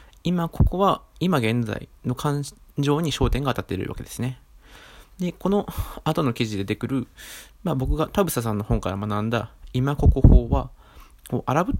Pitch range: 100-145 Hz